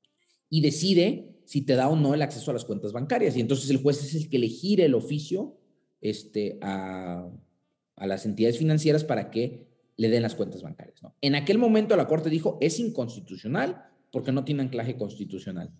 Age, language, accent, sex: 40-59, Spanish, Mexican, male